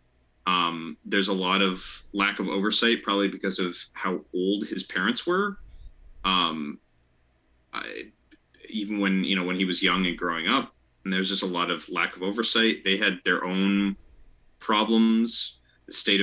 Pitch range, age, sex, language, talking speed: 80-105 Hz, 30-49, male, English, 165 wpm